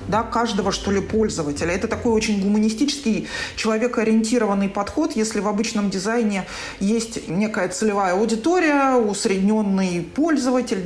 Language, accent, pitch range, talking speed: Russian, native, 195-230 Hz, 115 wpm